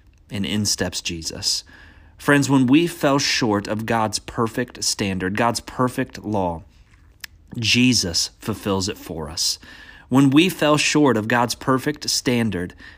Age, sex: 30-49, male